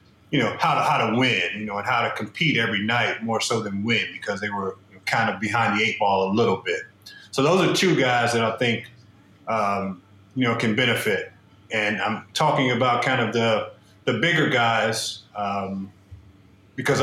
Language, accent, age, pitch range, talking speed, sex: English, American, 30-49, 110-135 Hz, 195 wpm, male